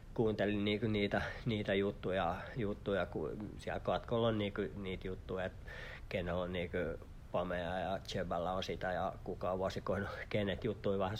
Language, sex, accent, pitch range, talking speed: Finnish, male, native, 95-115 Hz, 125 wpm